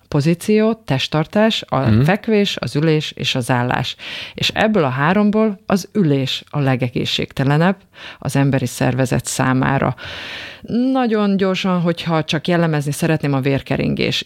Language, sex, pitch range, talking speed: Hungarian, female, 130-165 Hz, 120 wpm